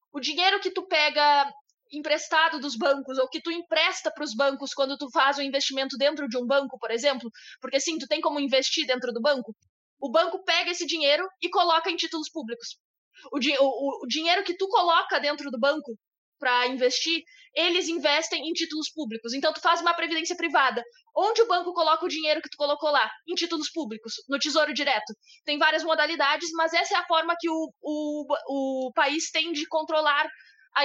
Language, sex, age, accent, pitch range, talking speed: Portuguese, female, 20-39, Brazilian, 280-335 Hz, 200 wpm